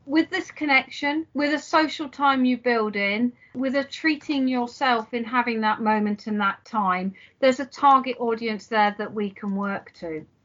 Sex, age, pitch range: female, 40-59, 205-265 Hz